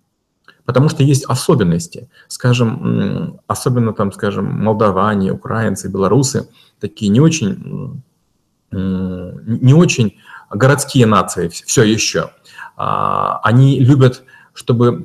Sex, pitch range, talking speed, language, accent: male, 105-130 Hz, 90 wpm, Russian, native